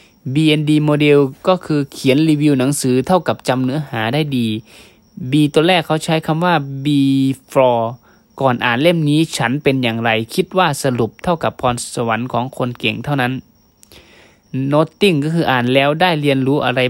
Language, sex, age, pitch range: Thai, male, 20-39, 125-155 Hz